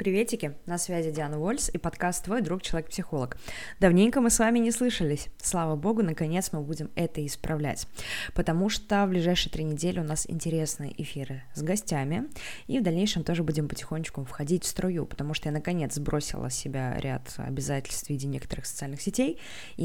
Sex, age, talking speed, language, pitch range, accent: female, 20-39, 180 wpm, Russian, 150-190 Hz, native